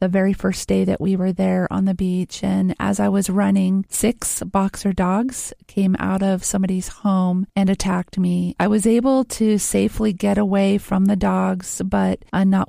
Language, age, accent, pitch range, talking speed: English, 40-59, American, 185-210 Hz, 185 wpm